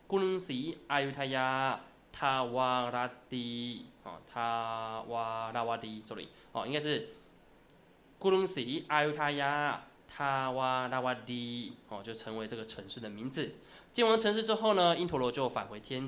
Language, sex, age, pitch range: Chinese, male, 20-39, 120-155 Hz